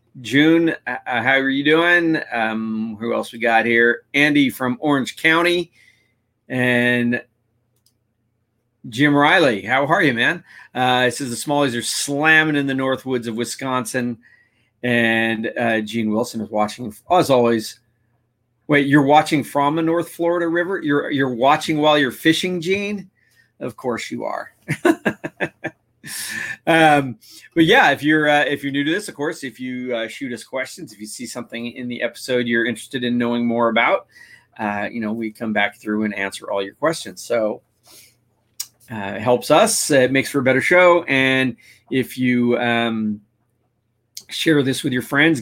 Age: 40-59